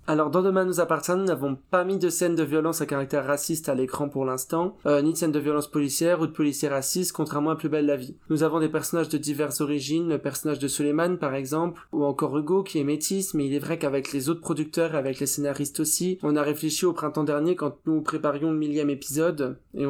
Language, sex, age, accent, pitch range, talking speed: French, male, 20-39, French, 145-165 Hz, 245 wpm